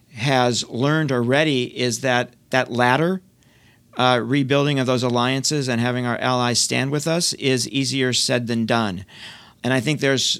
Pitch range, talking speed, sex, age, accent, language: 125-155 Hz, 160 wpm, male, 40-59, American, English